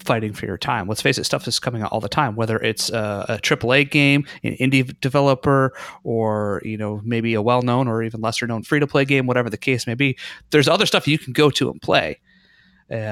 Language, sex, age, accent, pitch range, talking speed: English, male, 30-49, American, 115-145 Hz, 235 wpm